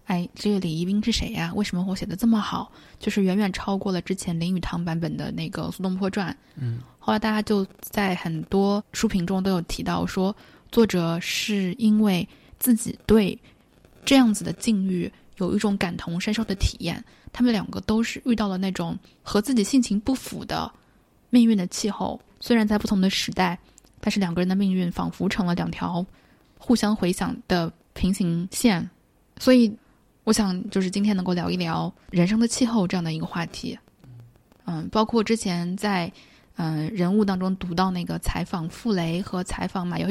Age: 10-29